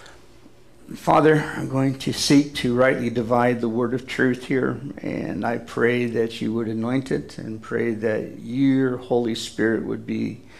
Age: 50-69